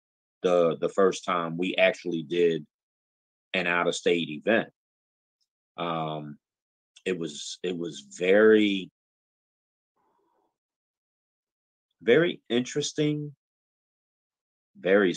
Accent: American